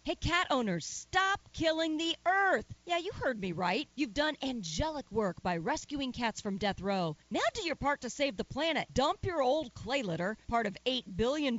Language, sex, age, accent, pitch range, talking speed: English, female, 40-59, American, 200-295 Hz, 200 wpm